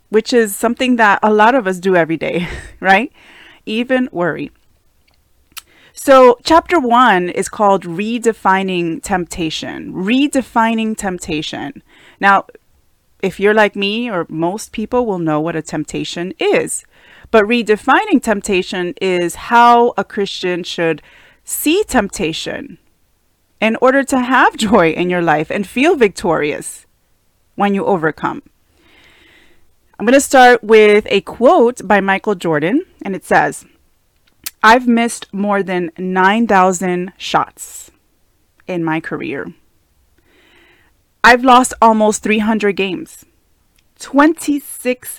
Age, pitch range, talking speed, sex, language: 30-49, 170-235 Hz, 120 wpm, female, English